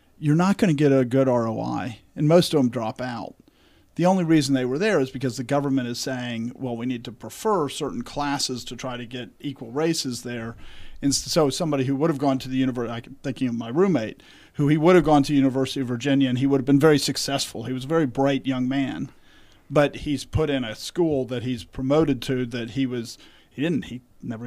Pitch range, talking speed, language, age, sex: 130-165 Hz, 235 wpm, English, 40-59, male